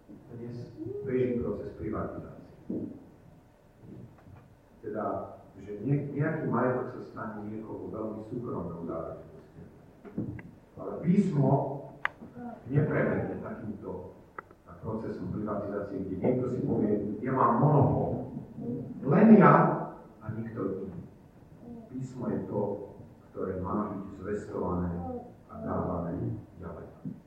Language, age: Slovak, 50-69